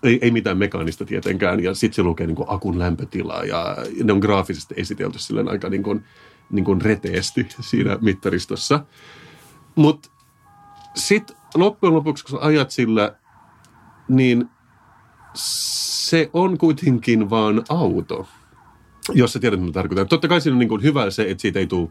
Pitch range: 95-135 Hz